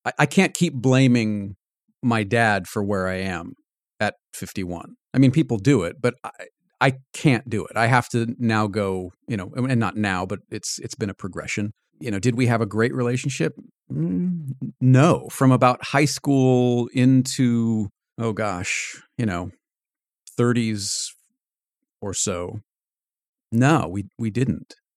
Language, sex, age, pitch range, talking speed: English, male, 40-59, 105-130 Hz, 155 wpm